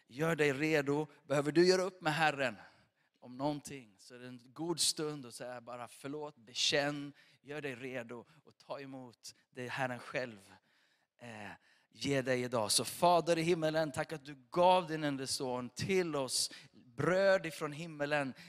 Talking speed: 165 wpm